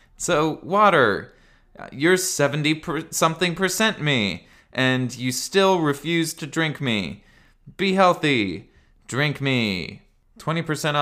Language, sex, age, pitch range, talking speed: English, male, 20-39, 110-160 Hz, 105 wpm